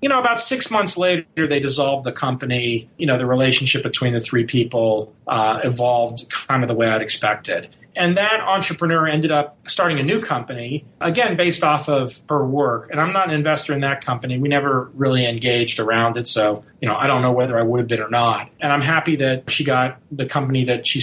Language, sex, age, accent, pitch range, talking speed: English, male, 30-49, American, 125-165 Hz, 225 wpm